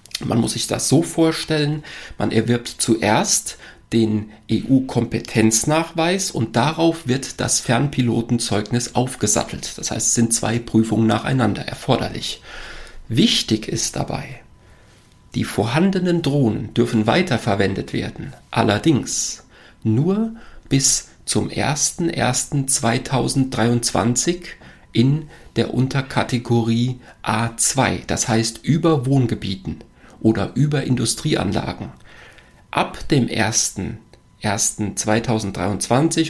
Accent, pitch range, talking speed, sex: German, 110-140 Hz, 90 wpm, male